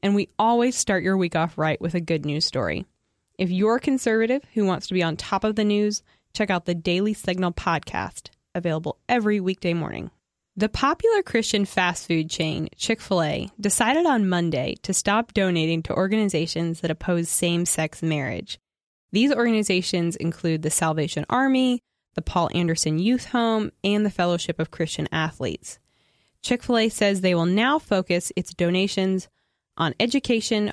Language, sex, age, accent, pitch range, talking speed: English, female, 20-39, American, 170-220 Hz, 160 wpm